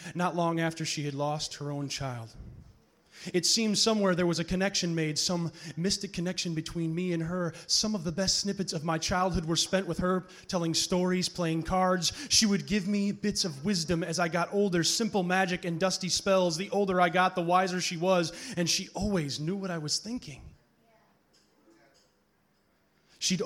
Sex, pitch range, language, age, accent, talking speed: male, 160-185 Hz, English, 30-49, American, 185 wpm